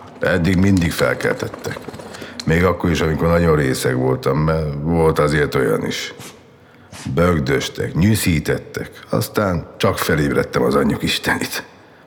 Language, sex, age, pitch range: Hungarian, male, 60-79, 80-100 Hz